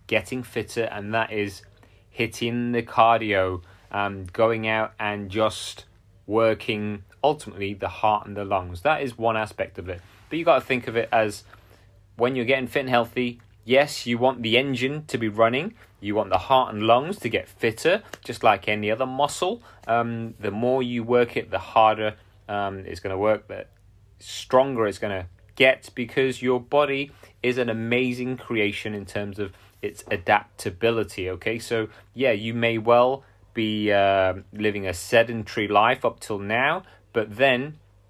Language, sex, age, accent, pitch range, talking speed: English, male, 30-49, British, 100-125 Hz, 175 wpm